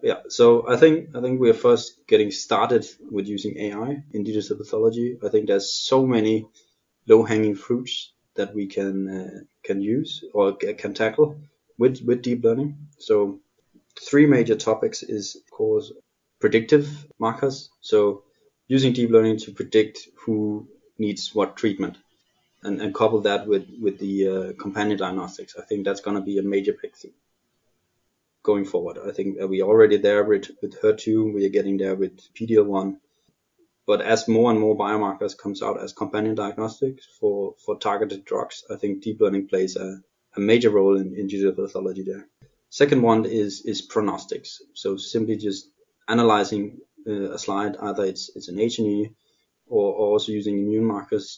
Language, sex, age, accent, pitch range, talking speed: English, male, 20-39, Danish, 100-160 Hz, 170 wpm